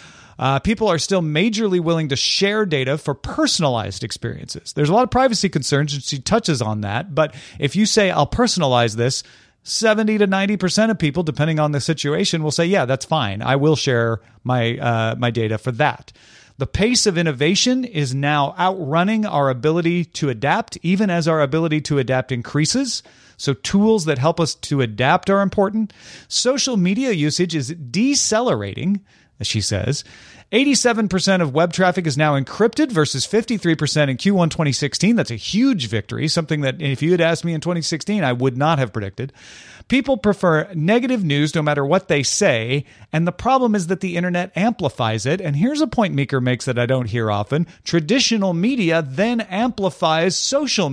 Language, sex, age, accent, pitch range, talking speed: English, male, 30-49, American, 135-195 Hz, 180 wpm